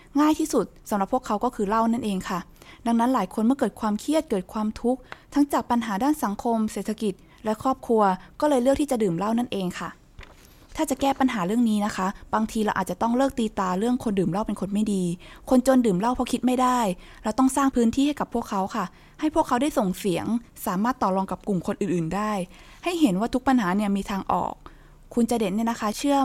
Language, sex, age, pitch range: Thai, female, 20-39, 200-255 Hz